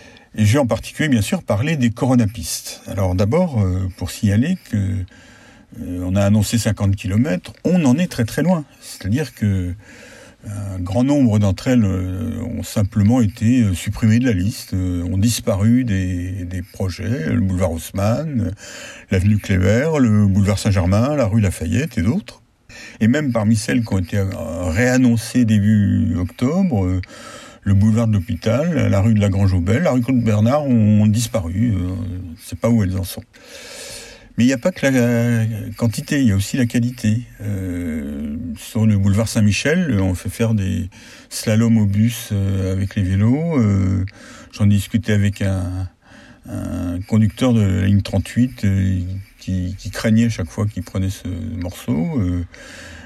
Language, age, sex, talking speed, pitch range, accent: French, 60-79, male, 160 wpm, 95-120 Hz, French